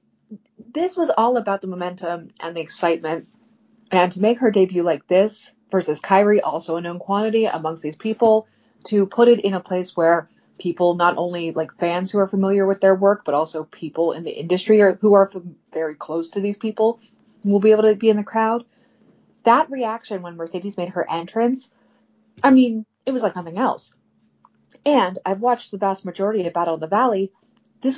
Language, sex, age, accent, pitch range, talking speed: English, female, 30-49, American, 170-225 Hz, 195 wpm